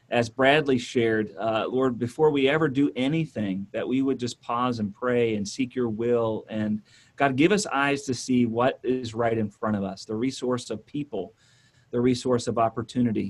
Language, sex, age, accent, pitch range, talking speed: English, male, 40-59, American, 115-135 Hz, 195 wpm